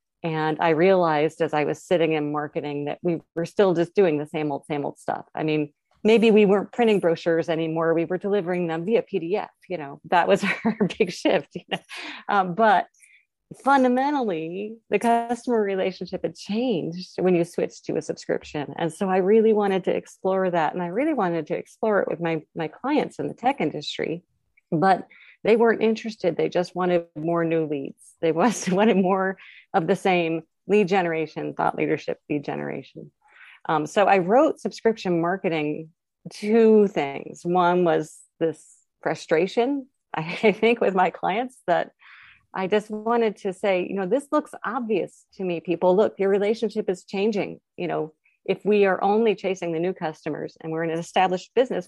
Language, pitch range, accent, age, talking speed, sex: English, 165-215 Hz, American, 40-59, 180 wpm, female